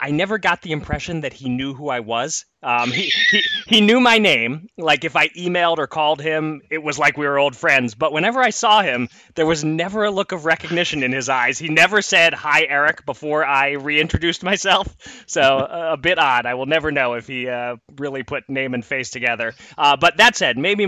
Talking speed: 225 wpm